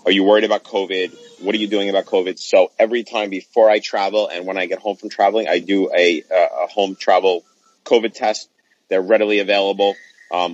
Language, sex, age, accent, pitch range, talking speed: English, male, 30-49, American, 95-125 Hz, 205 wpm